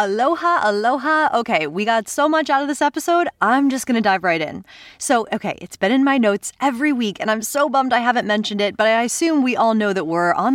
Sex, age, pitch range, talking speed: female, 20-39, 190-265 Hz, 245 wpm